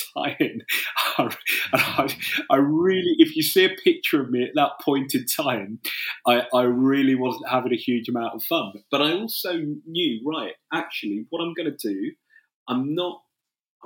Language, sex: English, male